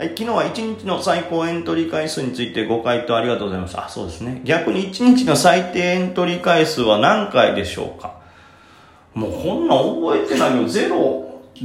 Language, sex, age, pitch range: Japanese, male, 30-49, 110-180 Hz